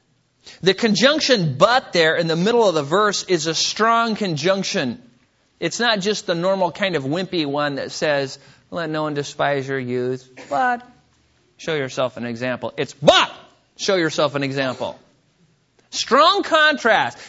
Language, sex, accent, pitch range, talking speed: English, male, American, 160-245 Hz, 155 wpm